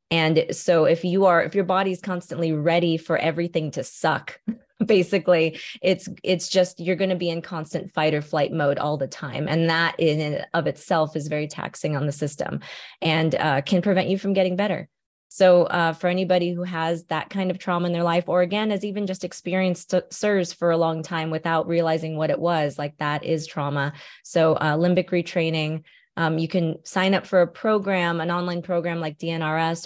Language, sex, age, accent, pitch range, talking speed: English, female, 20-39, American, 155-185 Hz, 205 wpm